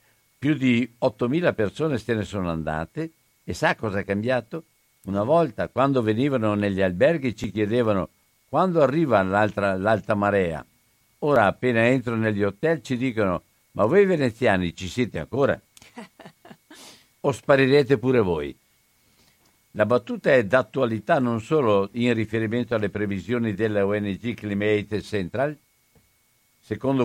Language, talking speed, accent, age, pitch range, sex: Italian, 125 wpm, native, 60-79, 100-130 Hz, male